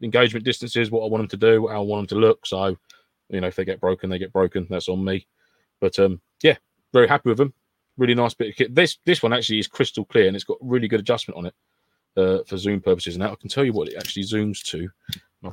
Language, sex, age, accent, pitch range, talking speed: English, male, 20-39, British, 95-120 Hz, 265 wpm